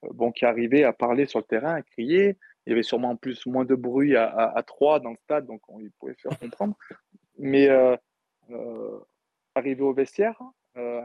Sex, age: male, 20-39